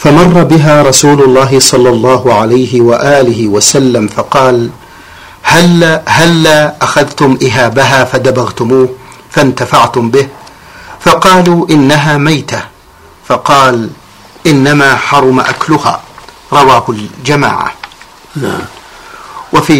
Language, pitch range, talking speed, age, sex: Arabic, 125-145 Hz, 80 wpm, 50-69, male